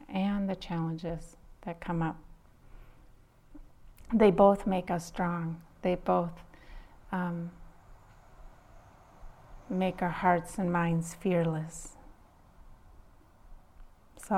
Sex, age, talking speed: female, 40-59, 90 wpm